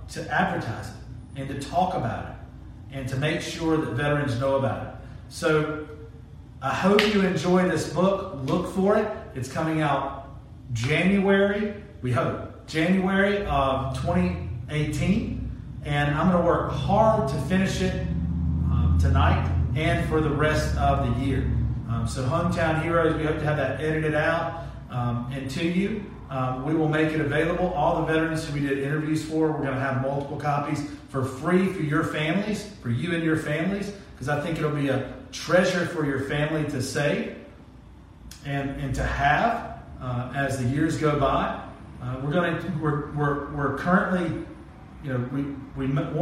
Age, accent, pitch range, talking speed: 40-59, American, 130-165 Hz, 170 wpm